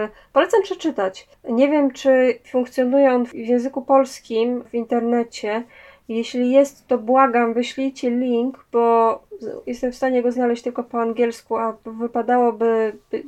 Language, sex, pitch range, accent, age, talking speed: Polish, female, 225-265 Hz, native, 20-39, 130 wpm